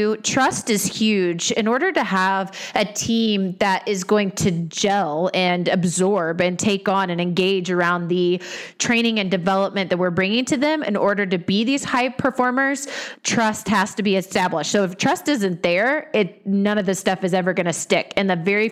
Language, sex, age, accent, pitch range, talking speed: English, female, 30-49, American, 180-215 Hz, 195 wpm